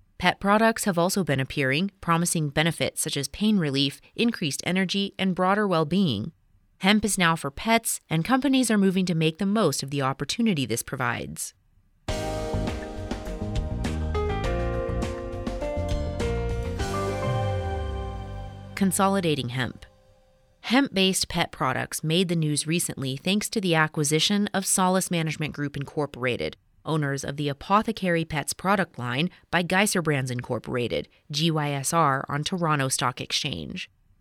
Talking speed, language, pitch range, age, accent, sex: 120 wpm, English, 130-185 Hz, 30-49, American, female